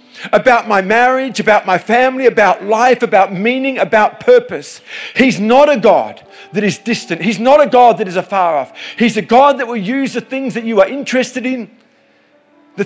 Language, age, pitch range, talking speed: English, 50-69, 155-235 Hz, 190 wpm